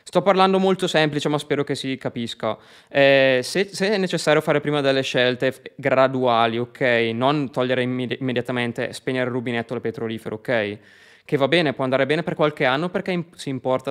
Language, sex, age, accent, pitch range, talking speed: Italian, male, 20-39, native, 125-150 Hz, 185 wpm